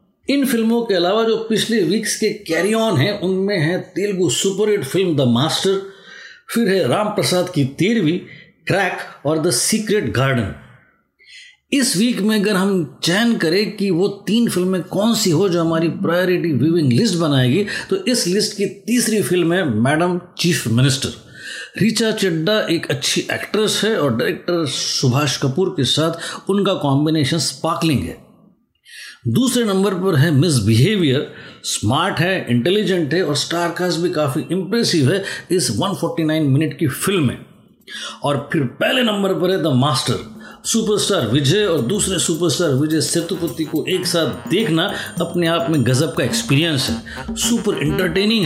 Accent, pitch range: native, 150-205 Hz